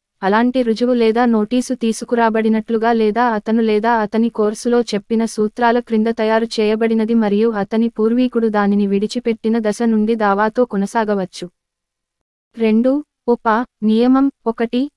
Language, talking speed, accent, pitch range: Telugu, 110 wpm, native, 215-235 Hz